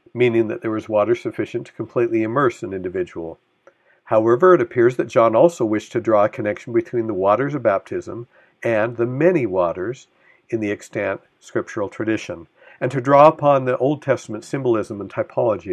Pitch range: 110-175 Hz